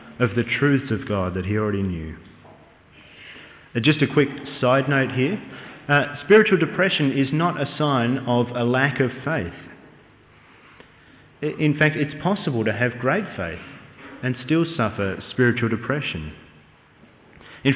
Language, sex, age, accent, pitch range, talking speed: English, male, 30-49, Australian, 115-150 Hz, 140 wpm